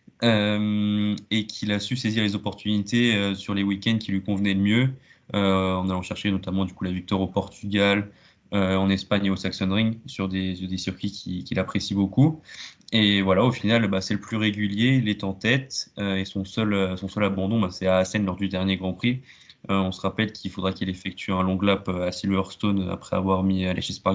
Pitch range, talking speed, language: 95-110 Hz, 225 wpm, French